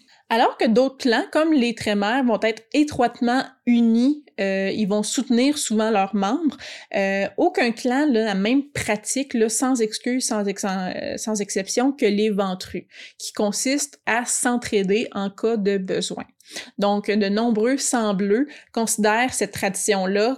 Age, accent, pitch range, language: 20-39, Canadian, 200-245 Hz, French